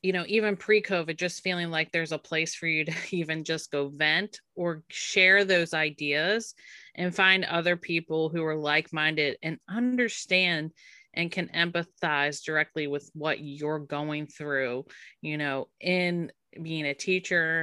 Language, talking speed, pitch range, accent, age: English, 155 wpm, 155-190 Hz, American, 30-49